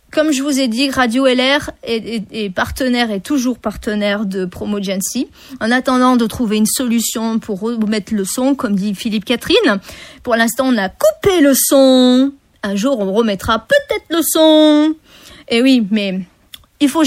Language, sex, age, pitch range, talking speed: French, female, 40-59, 230-305 Hz, 170 wpm